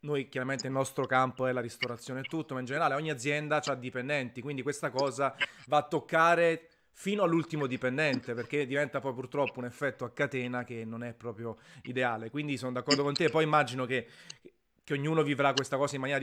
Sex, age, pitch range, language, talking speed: male, 30-49, 125-150 Hz, Italian, 200 wpm